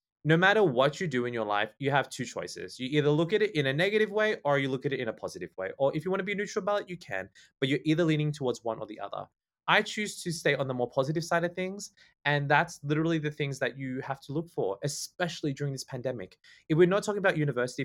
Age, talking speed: 20-39, 275 wpm